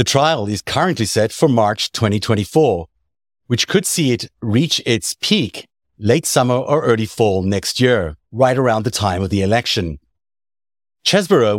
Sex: male